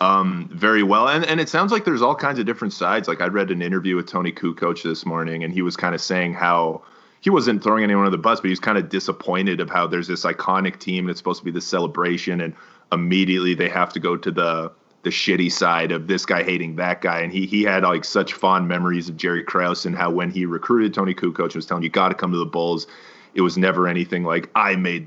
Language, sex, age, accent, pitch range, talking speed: English, male, 30-49, American, 85-95 Hz, 260 wpm